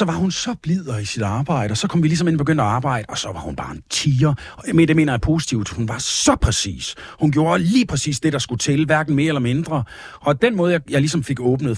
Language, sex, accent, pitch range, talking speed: Danish, male, native, 125-180 Hz, 275 wpm